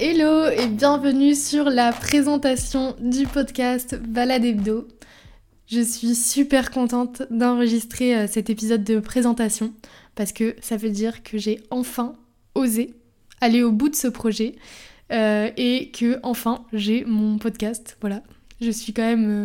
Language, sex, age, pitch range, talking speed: French, female, 20-39, 220-255 Hz, 140 wpm